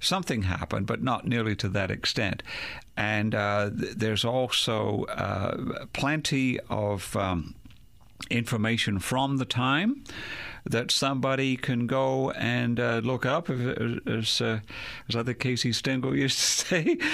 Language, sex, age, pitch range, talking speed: English, male, 50-69, 110-135 Hz, 140 wpm